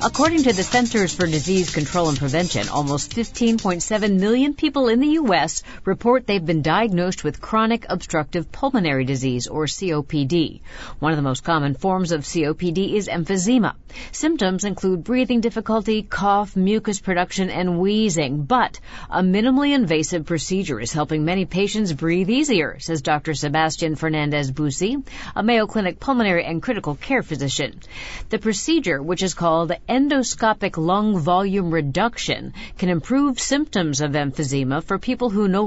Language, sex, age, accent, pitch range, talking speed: English, female, 50-69, American, 160-220 Hz, 145 wpm